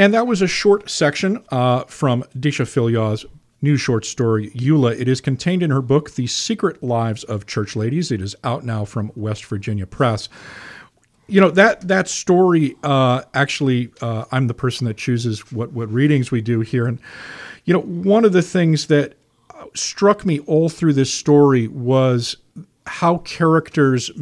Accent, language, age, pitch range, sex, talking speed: American, English, 40-59, 120-155 Hz, male, 175 wpm